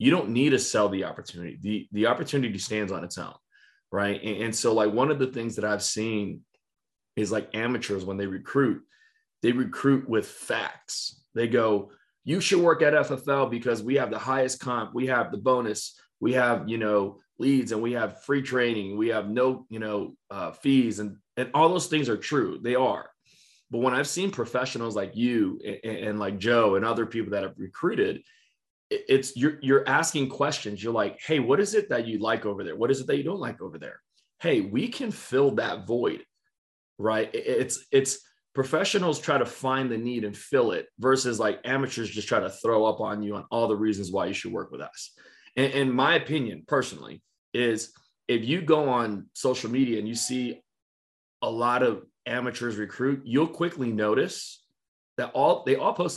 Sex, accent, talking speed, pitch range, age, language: male, American, 200 wpm, 110-140 Hz, 20-39, English